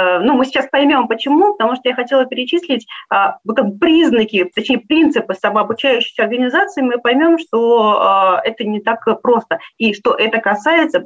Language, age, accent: Russian, 30-49, native